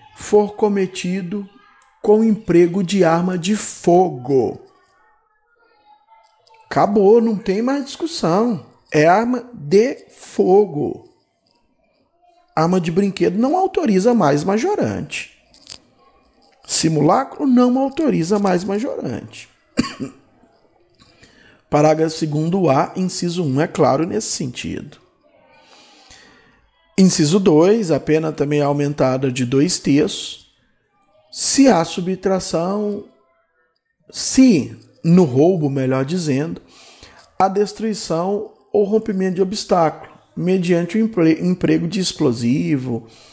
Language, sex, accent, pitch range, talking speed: Portuguese, male, Brazilian, 155-220 Hz, 95 wpm